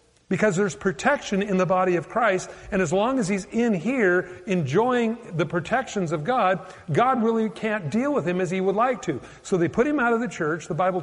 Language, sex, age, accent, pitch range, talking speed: English, male, 50-69, American, 140-205 Hz, 225 wpm